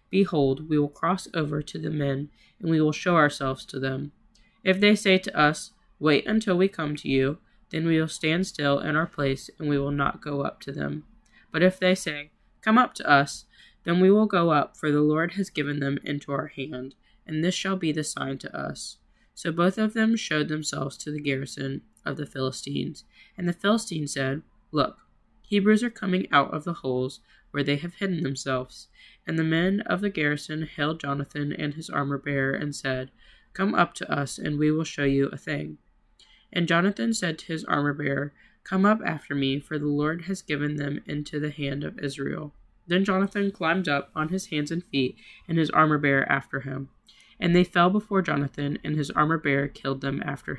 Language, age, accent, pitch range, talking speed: English, 20-39, American, 140-180 Hz, 205 wpm